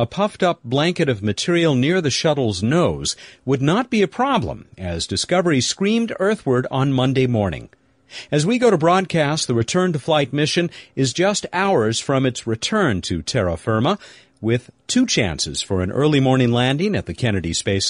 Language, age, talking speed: English, 50-69, 170 wpm